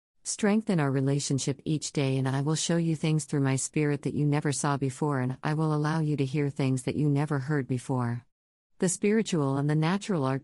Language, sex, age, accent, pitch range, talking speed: English, female, 50-69, American, 135-170 Hz, 220 wpm